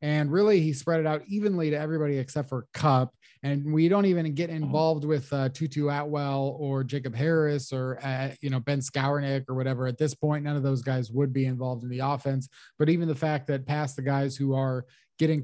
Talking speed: 220 wpm